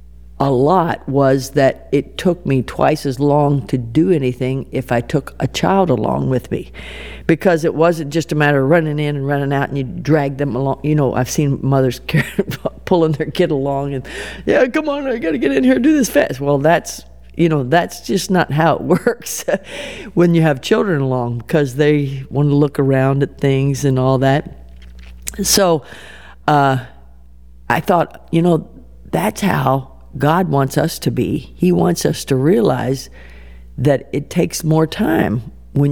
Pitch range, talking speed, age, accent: 125-160 Hz, 180 wpm, 50-69, American